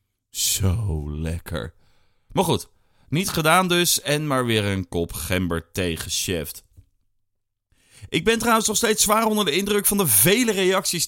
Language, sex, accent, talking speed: Dutch, male, Dutch, 145 wpm